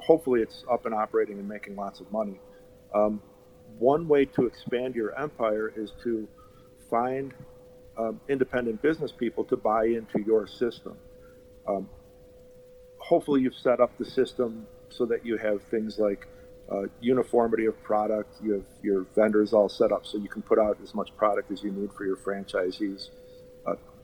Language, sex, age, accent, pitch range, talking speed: English, male, 50-69, American, 100-125 Hz, 170 wpm